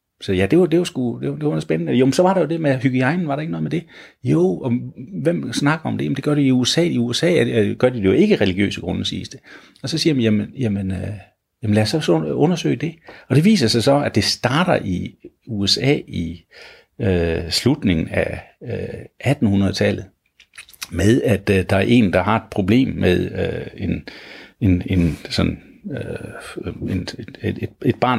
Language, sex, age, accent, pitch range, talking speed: Danish, male, 60-79, native, 95-135 Hz, 205 wpm